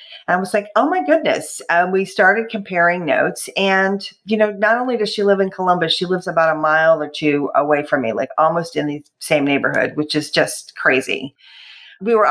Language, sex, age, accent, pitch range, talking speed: English, female, 40-59, American, 160-200 Hz, 210 wpm